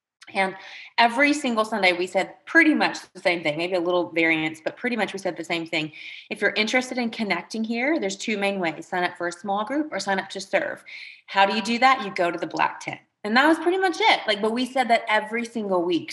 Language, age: English, 30-49